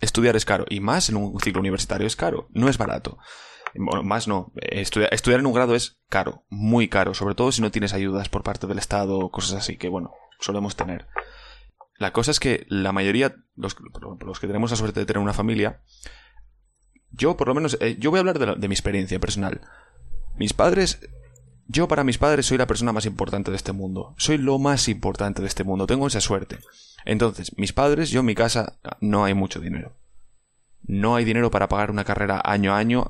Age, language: 20-39, Spanish